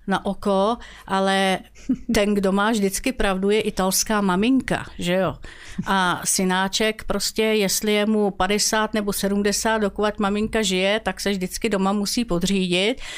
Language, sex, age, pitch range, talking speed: Slovak, female, 50-69, 195-220 Hz, 140 wpm